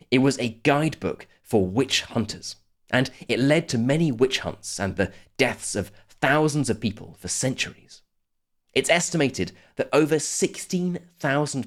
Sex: male